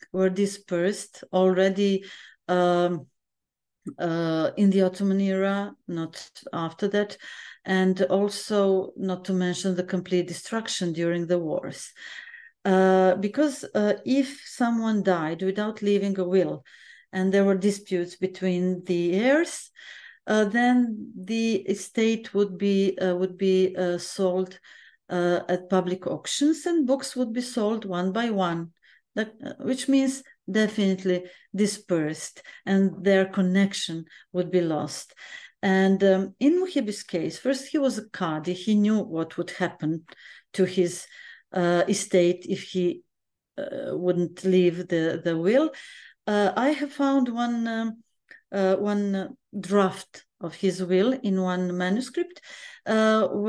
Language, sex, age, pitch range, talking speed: English, female, 40-59, 180-225 Hz, 130 wpm